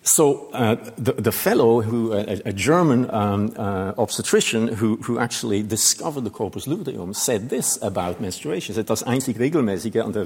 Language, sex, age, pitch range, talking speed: English, male, 50-69, 105-135 Hz, 165 wpm